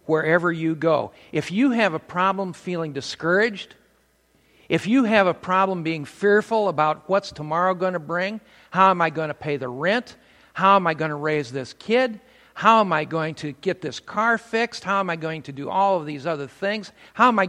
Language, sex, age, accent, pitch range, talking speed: English, male, 50-69, American, 140-195 Hz, 215 wpm